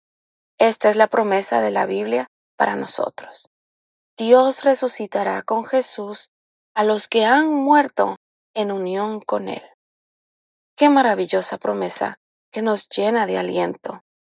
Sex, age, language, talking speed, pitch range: female, 20-39, Spanish, 125 wpm, 195-250 Hz